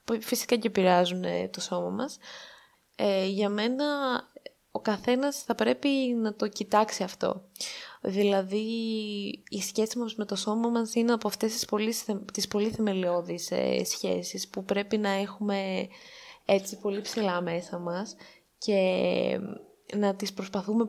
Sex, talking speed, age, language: female, 130 wpm, 20-39, Greek